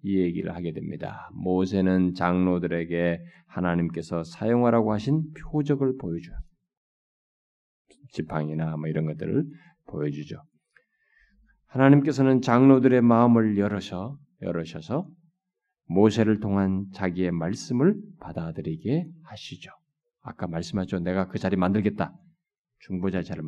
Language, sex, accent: Korean, male, native